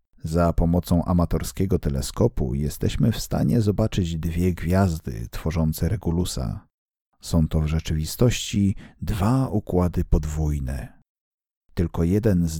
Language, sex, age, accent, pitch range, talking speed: English, male, 50-69, Polish, 80-110 Hz, 105 wpm